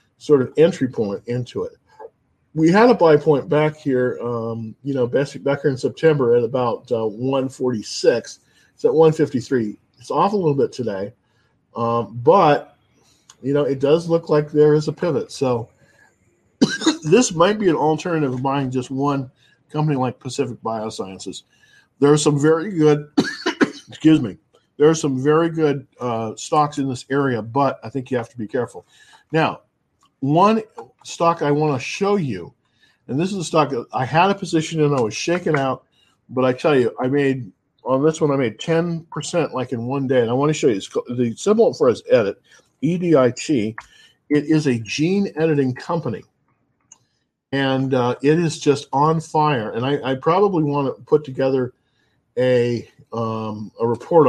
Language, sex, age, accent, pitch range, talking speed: English, male, 40-59, American, 125-155 Hz, 175 wpm